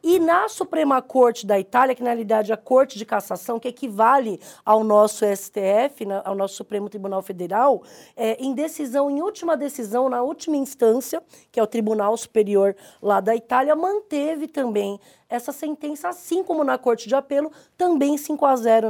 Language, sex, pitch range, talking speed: Portuguese, female, 210-290 Hz, 180 wpm